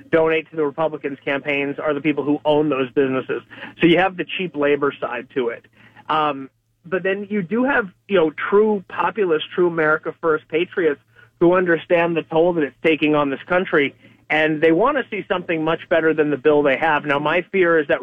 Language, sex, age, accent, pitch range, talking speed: English, male, 30-49, American, 150-180 Hz, 210 wpm